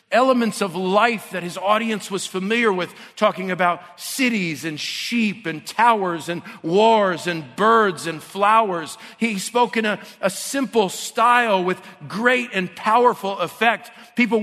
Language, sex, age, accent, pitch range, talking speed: English, male, 50-69, American, 160-210 Hz, 145 wpm